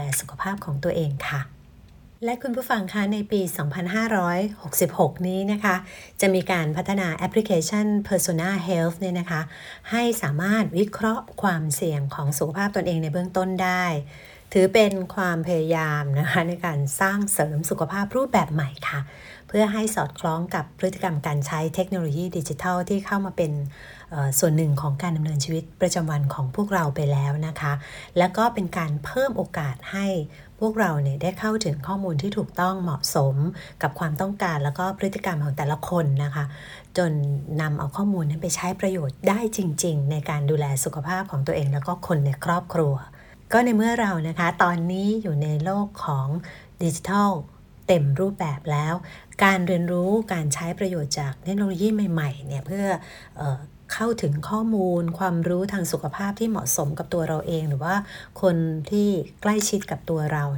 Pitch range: 150-195 Hz